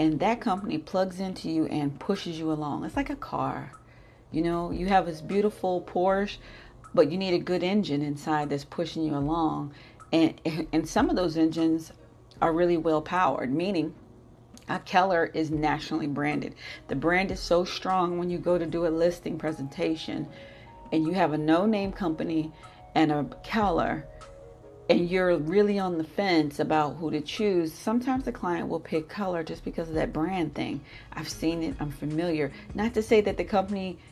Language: English